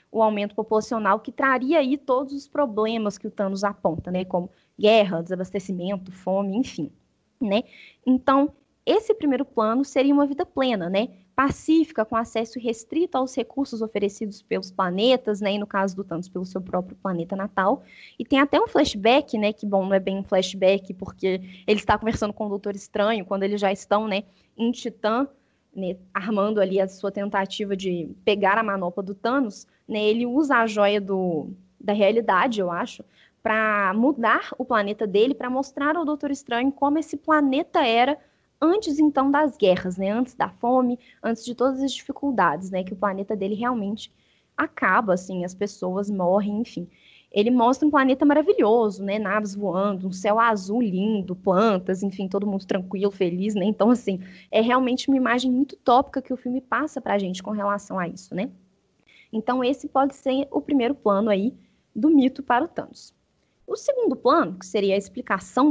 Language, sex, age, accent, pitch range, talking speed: Portuguese, female, 10-29, Brazilian, 195-260 Hz, 180 wpm